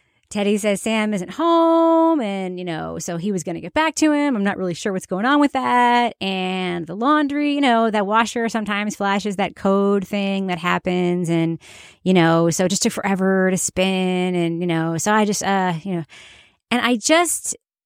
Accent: American